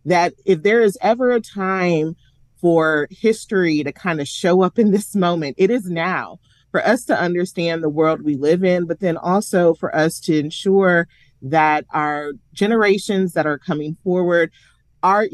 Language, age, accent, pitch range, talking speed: English, 30-49, American, 155-185 Hz, 170 wpm